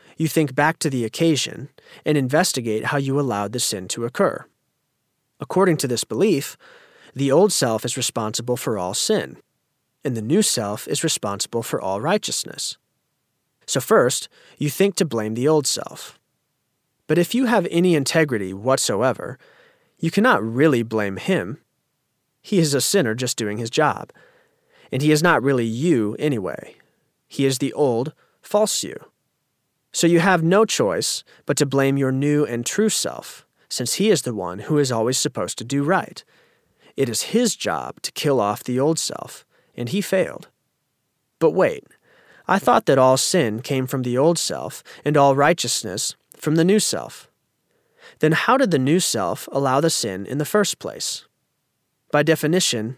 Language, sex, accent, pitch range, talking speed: English, male, American, 125-165 Hz, 170 wpm